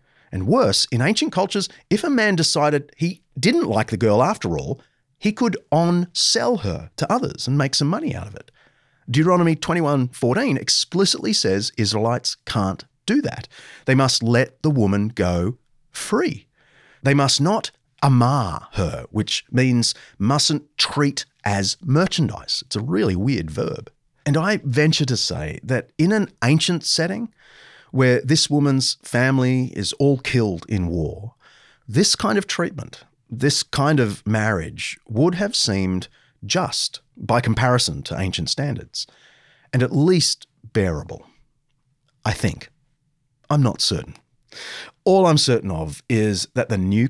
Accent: Australian